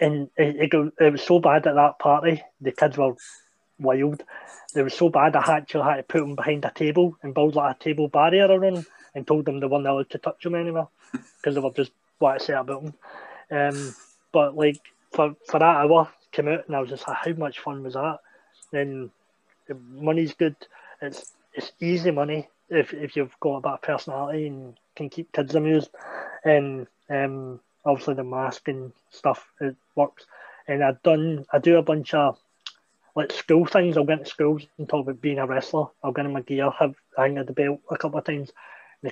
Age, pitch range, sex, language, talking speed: 20-39, 135-155 Hz, male, English, 210 wpm